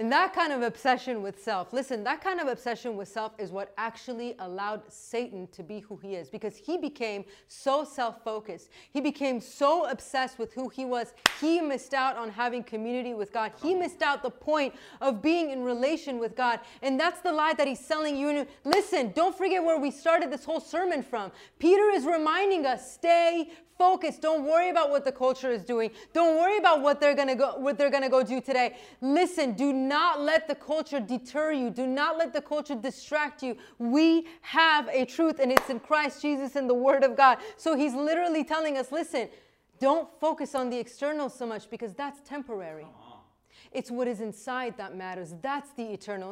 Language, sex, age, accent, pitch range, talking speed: English, female, 30-49, American, 235-310 Hz, 195 wpm